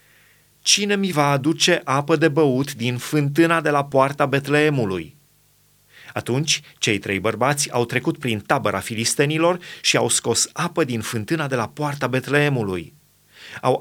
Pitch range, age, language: 120-155 Hz, 30-49, Romanian